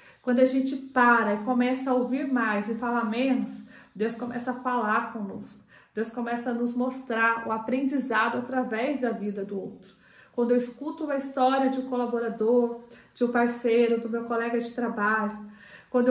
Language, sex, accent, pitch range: Portuguese, female, Brazilian, 235-265 Hz